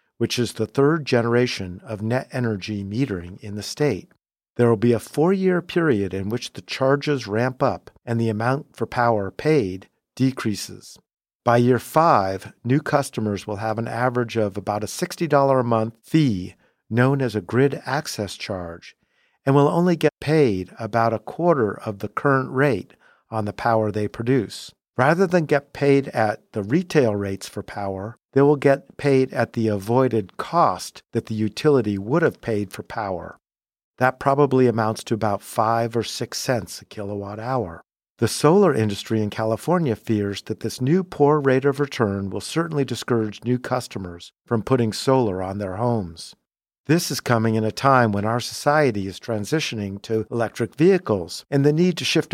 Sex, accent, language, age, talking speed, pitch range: male, American, English, 50-69, 175 wpm, 105-140 Hz